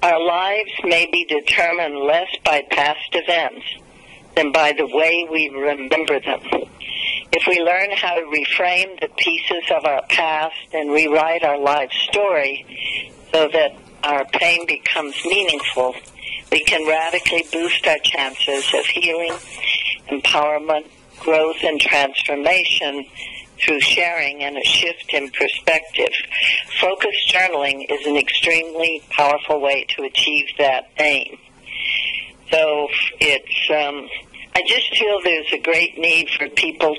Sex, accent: female, American